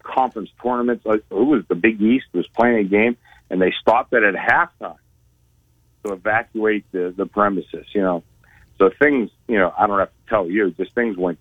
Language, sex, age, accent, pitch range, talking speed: English, male, 50-69, American, 95-120 Hz, 195 wpm